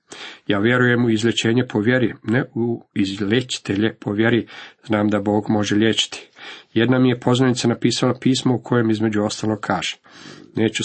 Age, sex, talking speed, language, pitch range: 50-69, male, 155 wpm, Croatian, 105-120 Hz